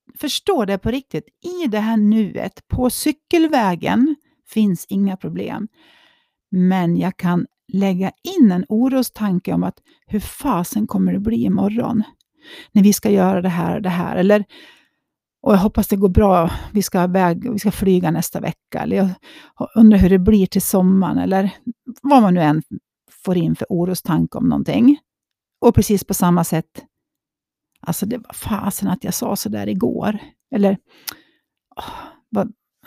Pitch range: 185-255 Hz